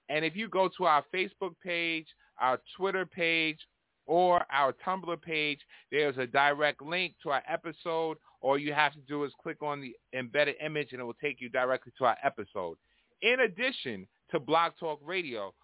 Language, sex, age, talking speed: English, male, 30-49, 185 wpm